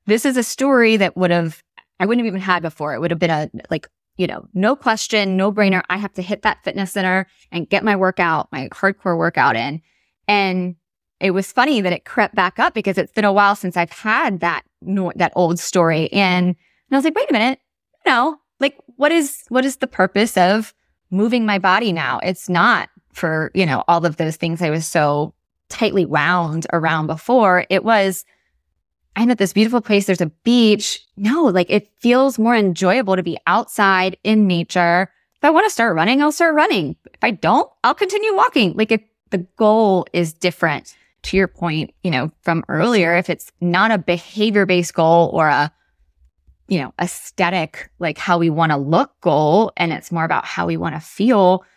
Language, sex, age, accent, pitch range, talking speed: English, female, 20-39, American, 170-215 Hz, 205 wpm